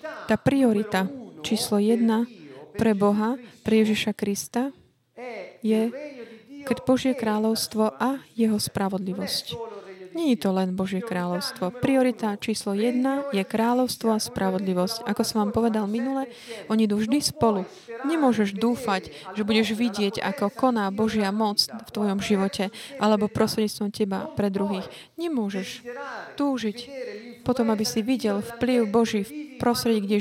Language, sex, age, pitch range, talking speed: Slovak, female, 20-39, 195-235 Hz, 130 wpm